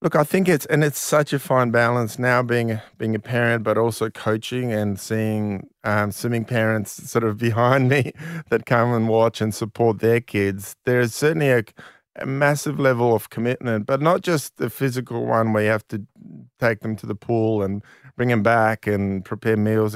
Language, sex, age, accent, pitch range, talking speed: English, male, 30-49, Australian, 110-125 Hz, 200 wpm